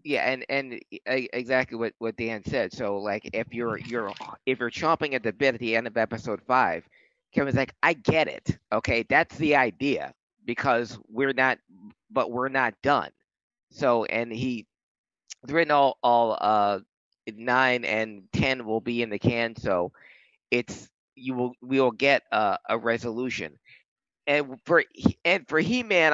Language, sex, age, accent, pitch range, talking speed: English, male, 50-69, American, 115-155 Hz, 170 wpm